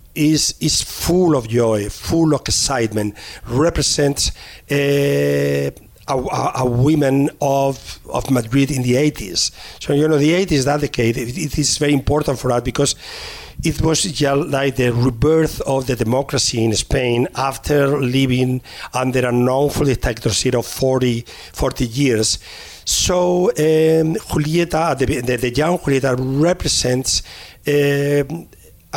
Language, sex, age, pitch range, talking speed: English, male, 50-69, 120-150 Hz, 135 wpm